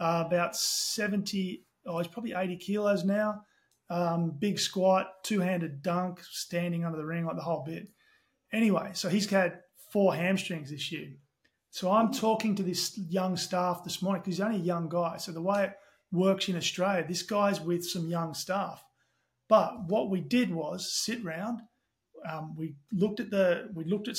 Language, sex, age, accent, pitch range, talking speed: English, male, 30-49, Australian, 170-200 Hz, 180 wpm